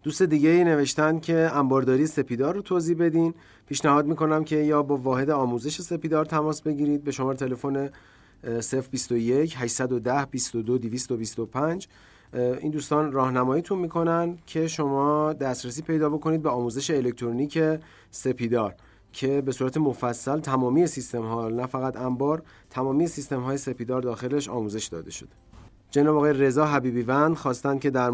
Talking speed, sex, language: 130 wpm, male, Persian